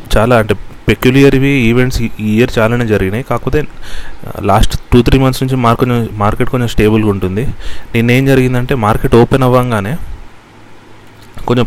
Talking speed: 135 wpm